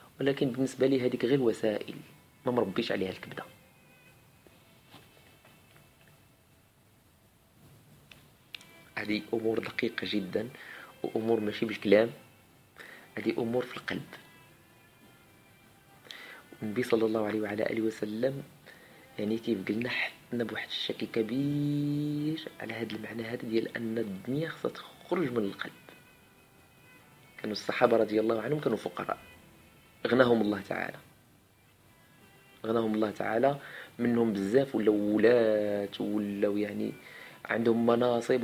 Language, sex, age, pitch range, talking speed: Arabic, male, 40-59, 110-130 Hz, 105 wpm